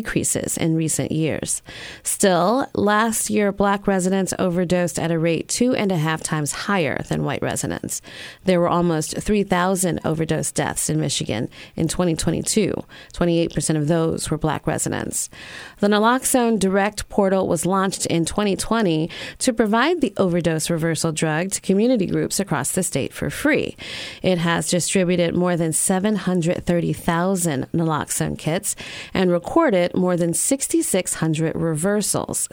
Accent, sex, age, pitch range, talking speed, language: American, female, 30-49, 160-195 Hz, 135 wpm, English